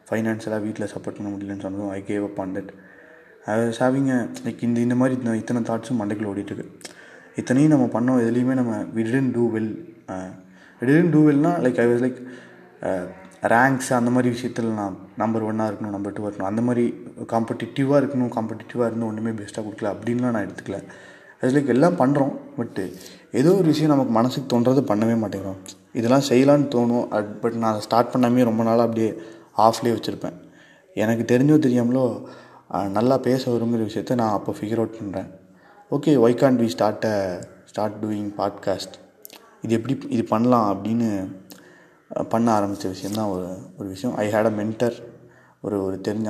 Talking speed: 165 wpm